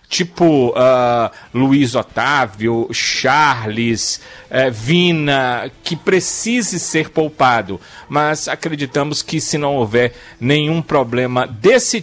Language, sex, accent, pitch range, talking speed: Portuguese, male, Brazilian, 130-175 Hz, 100 wpm